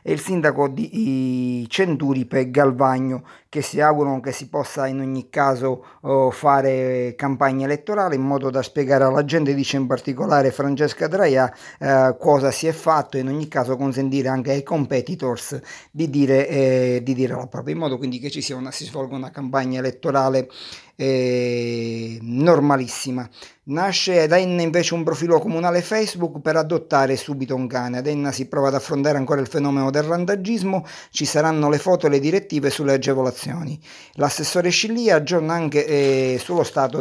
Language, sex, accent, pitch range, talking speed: Italian, male, native, 130-160 Hz, 165 wpm